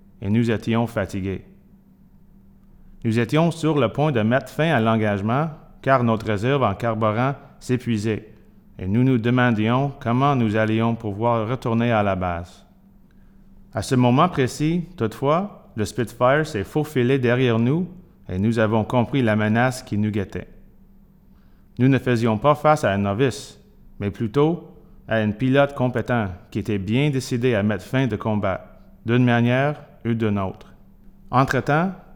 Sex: male